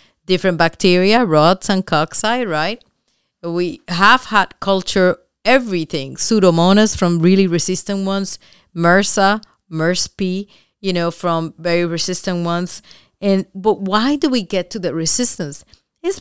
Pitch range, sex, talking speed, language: 170-205 Hz, female, 120 wpm, English